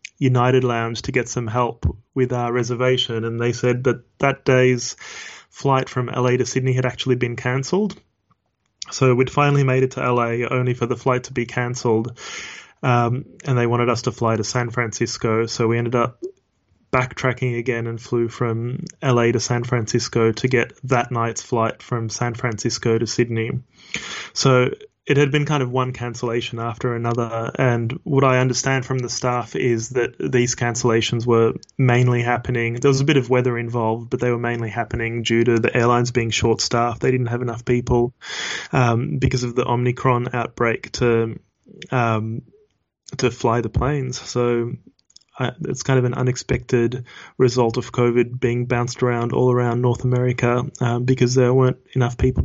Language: English